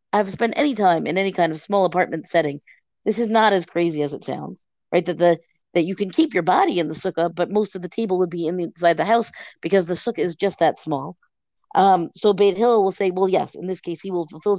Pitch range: 170-210 Hz